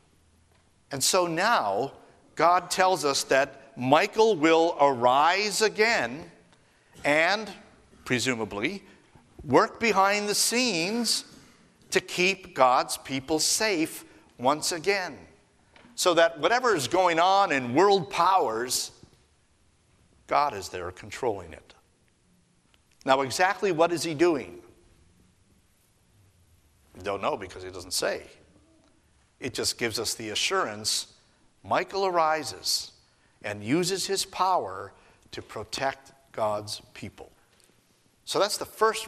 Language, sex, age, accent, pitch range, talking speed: English, male, 50-69, American, 115-185 Hz, 105 wpm